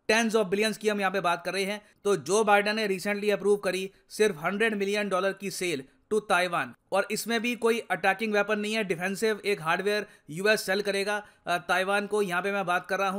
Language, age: Hindi, 30-49